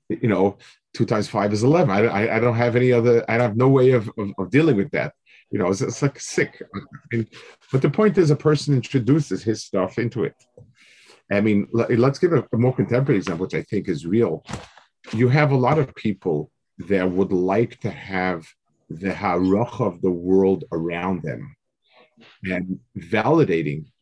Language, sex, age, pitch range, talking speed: English, male, 50-69, 95-125 Hz, 190 wpm